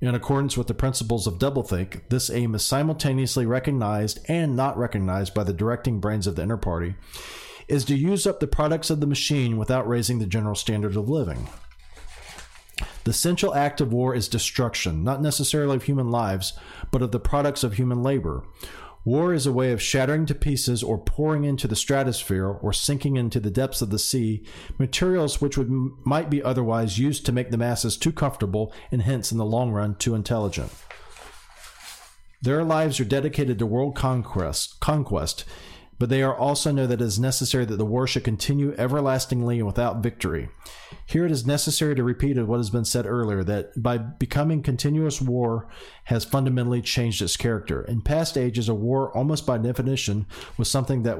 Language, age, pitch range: English, 40-59, 110-140 Hz